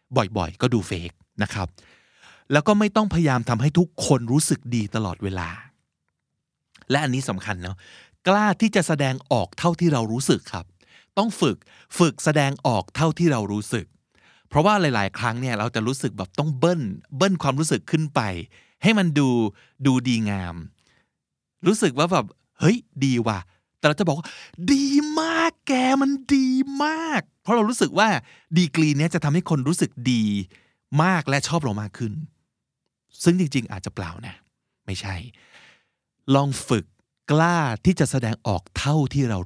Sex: male